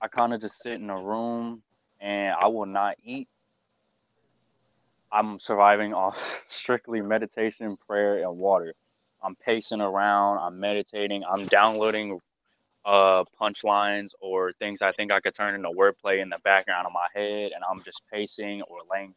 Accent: American